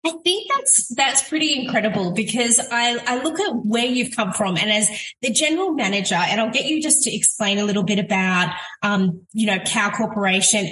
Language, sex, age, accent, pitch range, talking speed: English, female, 20-39, Australian, 195-245 Hz, 200 wpm